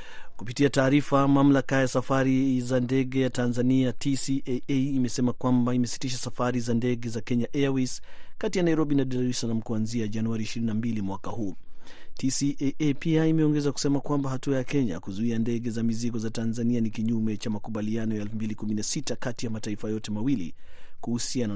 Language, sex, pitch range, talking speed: Swahili, male, 115-135 Hz, 160 wpm